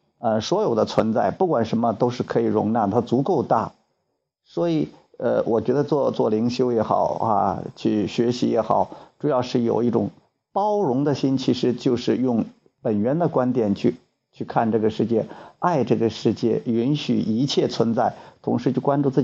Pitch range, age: 125-175 Hz, 50-69